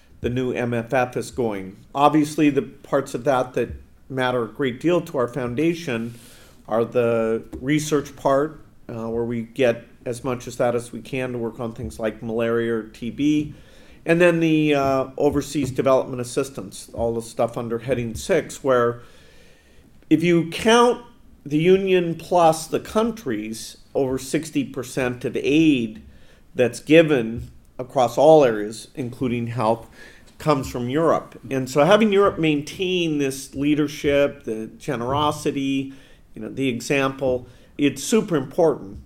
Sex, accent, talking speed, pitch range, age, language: male, American, 145 wpm, 120-150 Hz, 50-69, English